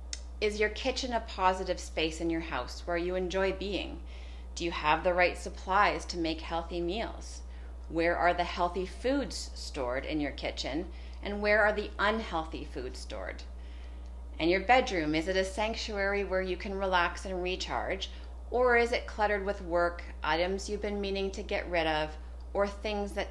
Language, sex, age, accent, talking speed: English, female, 30-49, American, 180 wpm